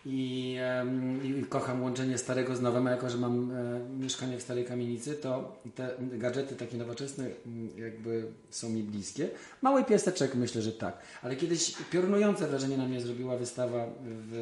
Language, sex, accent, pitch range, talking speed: Polish, male, native, 115-130 Hz, 170 wpm